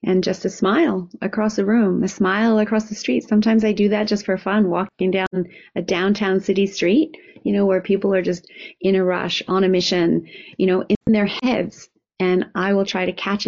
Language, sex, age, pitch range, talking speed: English, female, 30-49, 180-215 Hz, 215 wpm